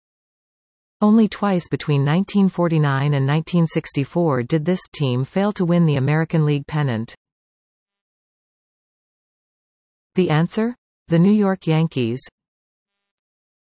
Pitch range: 140-195 Hz